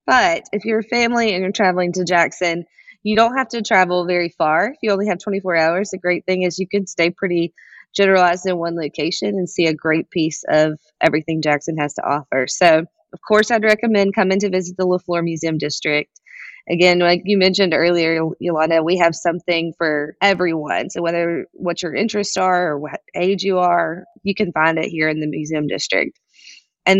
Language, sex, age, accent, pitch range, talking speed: English, female, 20-39, American, 170-195 Hz, 200 wpm